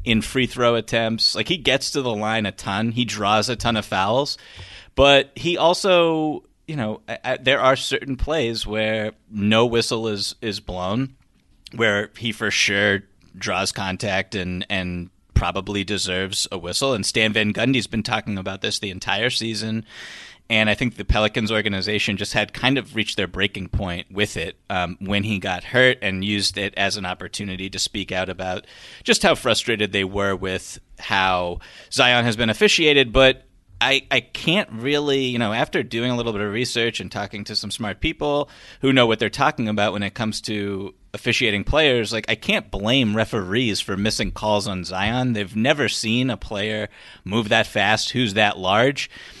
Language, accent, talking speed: English, American, 185 wpm